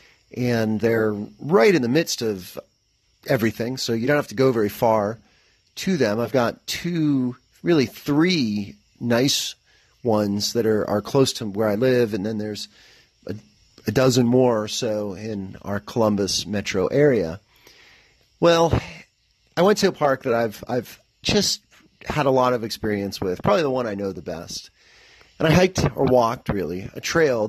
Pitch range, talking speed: 105-130 Hz, 170 wpm